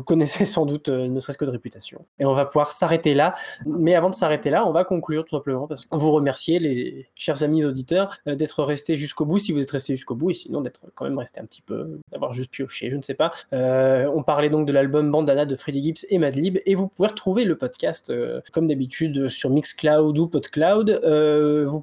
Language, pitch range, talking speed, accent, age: French, 140-170 Hz, 240 wpm, French, 20-39